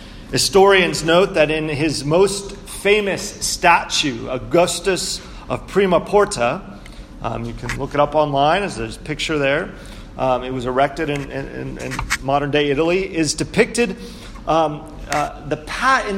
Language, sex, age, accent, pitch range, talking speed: English, male, 40-59, American, 140-195 Hz, 150 wpm